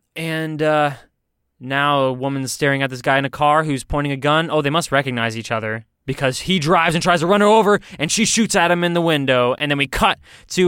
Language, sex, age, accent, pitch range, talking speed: English, male, 20-39, American, 125-160 Hz, 245 wpm